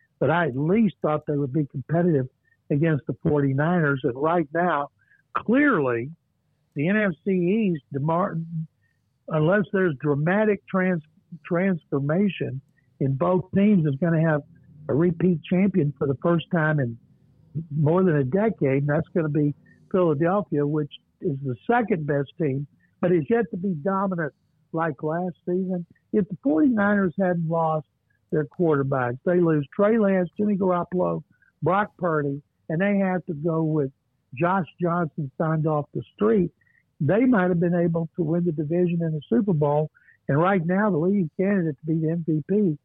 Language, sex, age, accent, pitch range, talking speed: English, male, 60-79, American, 145-180 Hz, 160 wpm